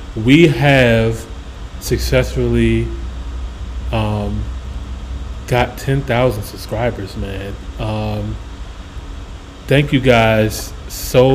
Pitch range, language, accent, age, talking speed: 100-125 Hz, English, American, 30-49, 70 wpm